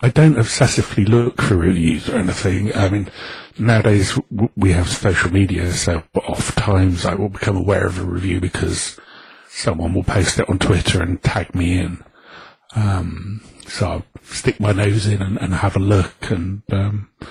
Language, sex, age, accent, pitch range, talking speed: English, male, 50-69, British, 90-110 Hz, 170 wpm